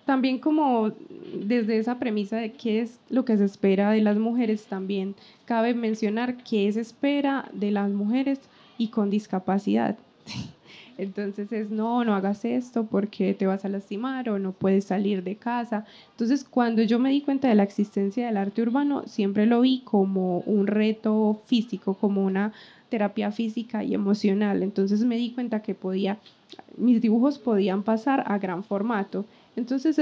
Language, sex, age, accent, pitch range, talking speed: Spanish, female, 10-29, Colombian, 200-245 Hz, 165 wpm